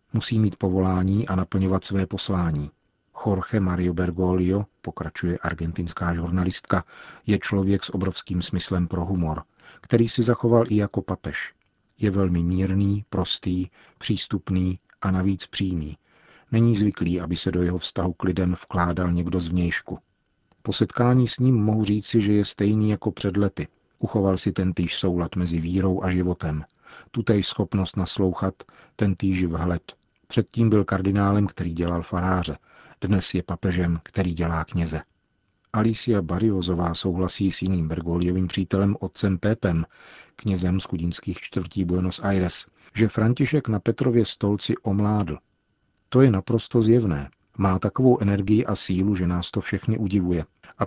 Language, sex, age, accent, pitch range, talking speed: Czech, male, 40-59, native, 90-105 Hz, 140 wpm